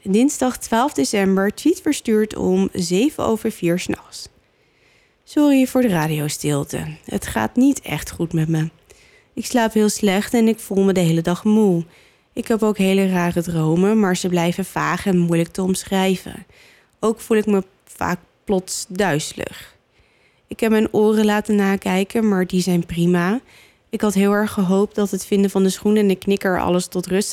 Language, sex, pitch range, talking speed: Dutch, female, 180-220 Hz, 180 wpm